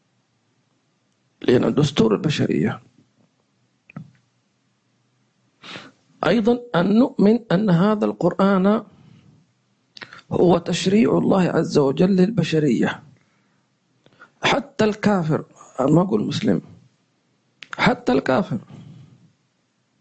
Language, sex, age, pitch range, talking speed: English, male, 50-69, 165-215 Hz, 65 wpm